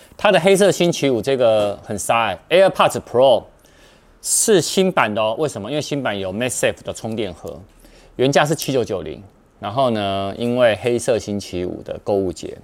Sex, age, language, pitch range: male, 30-49, Chinese, 100-135 Hz